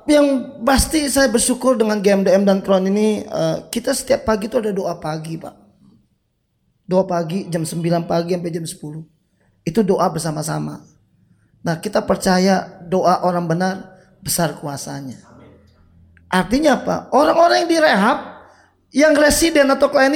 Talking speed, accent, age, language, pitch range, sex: 135 wpm, native, 20-39, Indonesian, 195-275 Hz, male